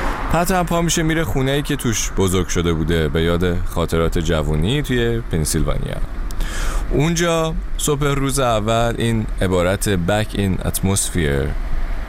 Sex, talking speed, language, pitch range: male, 130 wpm, Persian, 85-115 Hz